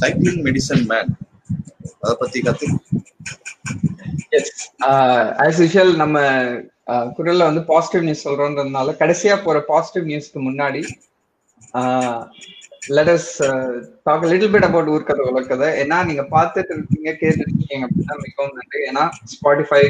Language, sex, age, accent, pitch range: Tamil, male, 20-39, native, 140-180 Hz